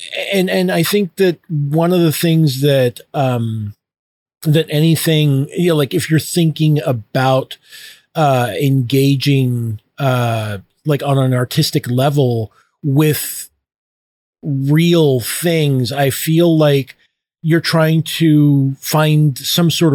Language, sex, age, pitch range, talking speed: English, male, 40-59, 130-165 Hz, 120 wpm